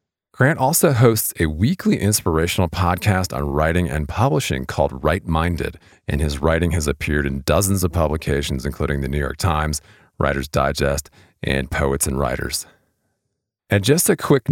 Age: 40-59